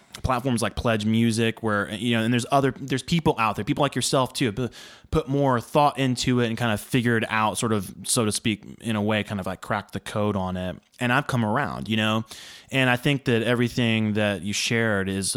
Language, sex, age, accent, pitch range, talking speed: English, male, 20-39, American, 105-130 Hz, 230 wpm